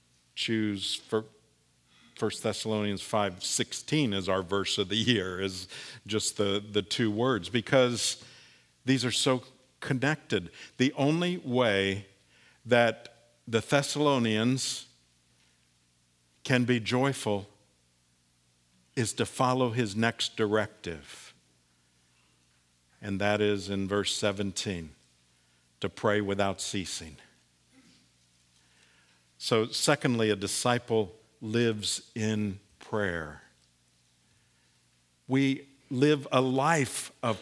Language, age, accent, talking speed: English, 50-69, American, 95 wpm